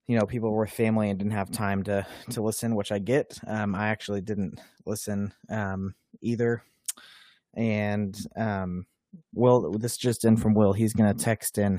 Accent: American